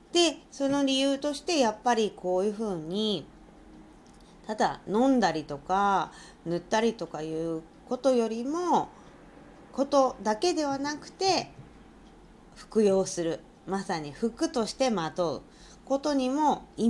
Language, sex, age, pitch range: Japanese, female, 40-59, 175-260 Hz